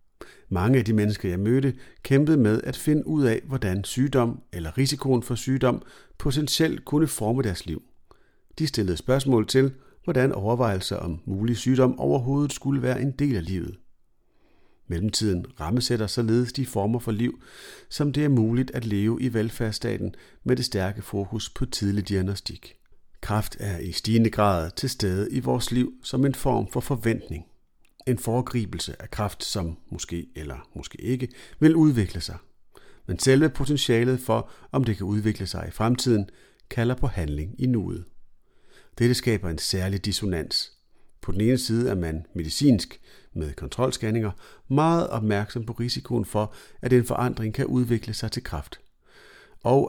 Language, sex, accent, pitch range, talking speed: Danish, male, native, 95-130 Hz, 160 wpm